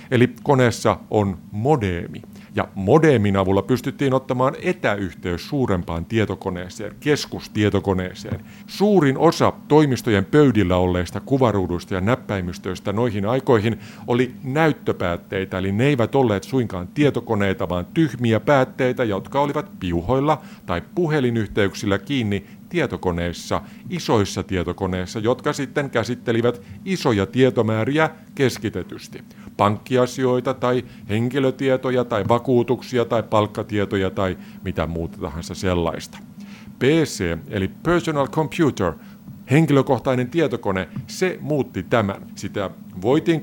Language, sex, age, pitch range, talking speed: Finnish, male, 50-69, 100-135 Hz, 100 wpm